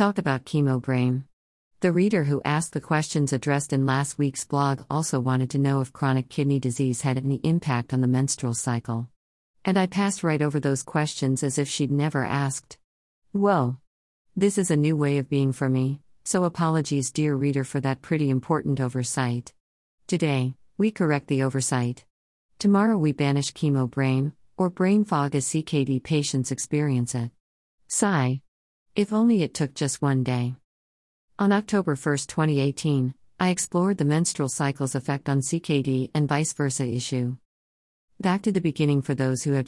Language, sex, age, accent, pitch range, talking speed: English, female, 50-69, American, 130-155 Hz, 170 wpm